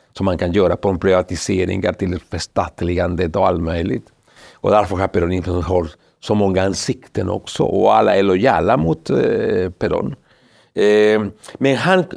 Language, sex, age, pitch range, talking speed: Swedish, male, 60-79, 95-135 Hz, 145 wpm